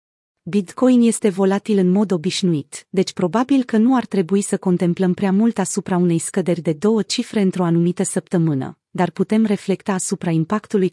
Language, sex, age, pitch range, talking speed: Romanian, female, 30-49, 175-215 Hz, 165 wpm